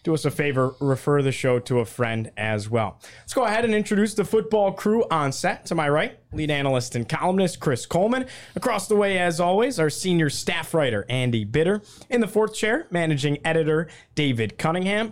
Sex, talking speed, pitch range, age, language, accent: male, 200 wpm, 135-200 Hz, 20-39, English, American